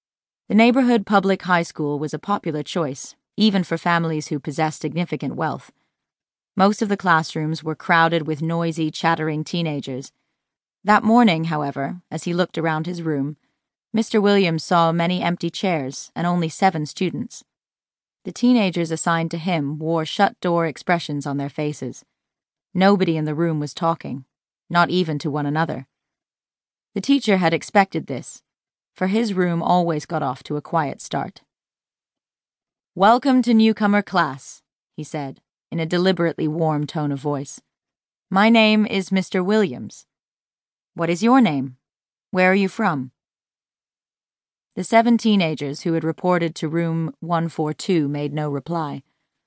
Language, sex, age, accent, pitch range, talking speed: English, female, 30-49, American, 155-185 Hz, 145 wpm